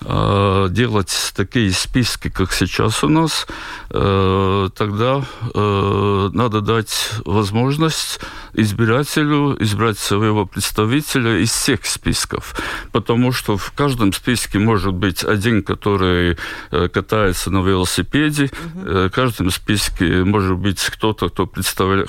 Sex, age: male, 50-69